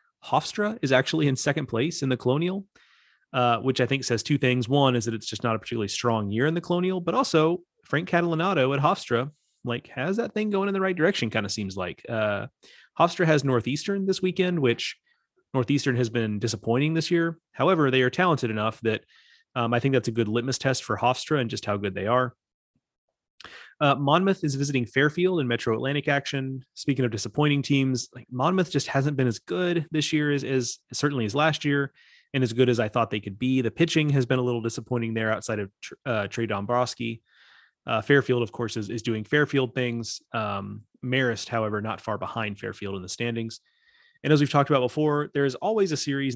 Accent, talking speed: American, 210 wpm